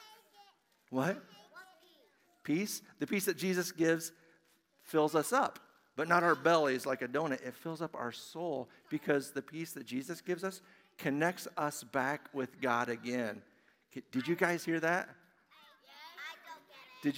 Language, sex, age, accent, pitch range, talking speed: English, male, 50-69, American, 135-195 Hz, 145 wpm